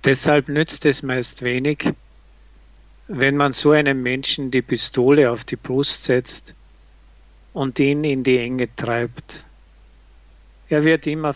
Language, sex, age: Japanese, male, 50-69